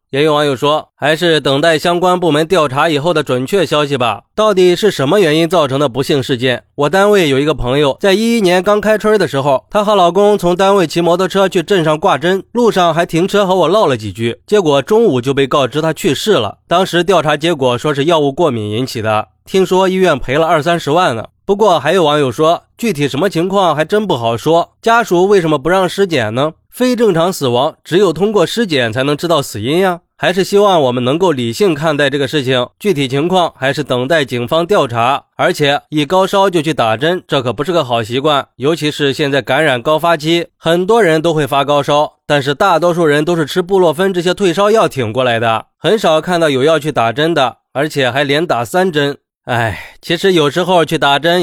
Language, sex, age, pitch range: Chinese, male, 20-39, 140-180 Hz